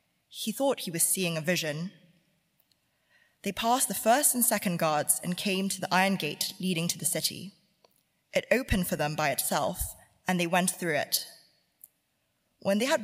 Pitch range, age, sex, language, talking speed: 160-200 Hz, 20-39, female, English, 175 wpm